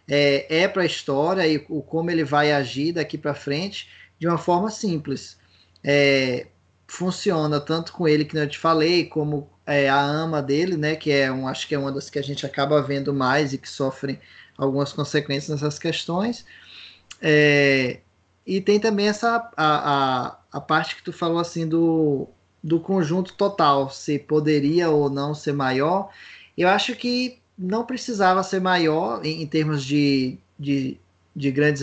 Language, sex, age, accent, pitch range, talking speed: Portuguese, male, 20-39, Brazilian, 140-170 Hz, 170 wpm